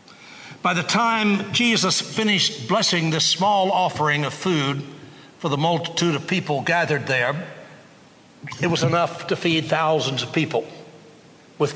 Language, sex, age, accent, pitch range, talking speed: English, male, 60-79, American, 150-185 Hz, 140 wpm